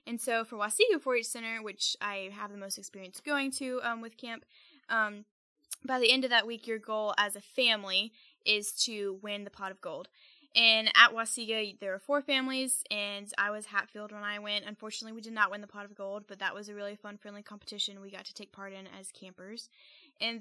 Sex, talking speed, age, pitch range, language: female, 225 wpm, 10-29, 205-245 Hz, English